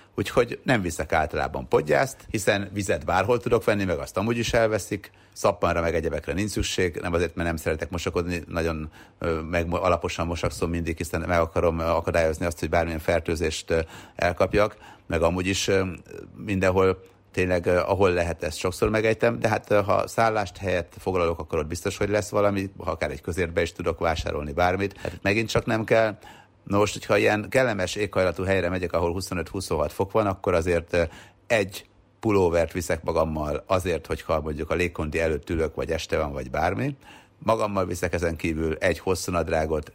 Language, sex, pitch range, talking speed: Hungarian, male, 85-100 Hz, 165 wpm